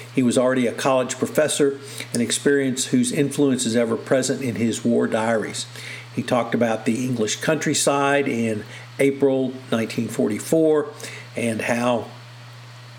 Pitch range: 120-135 Hz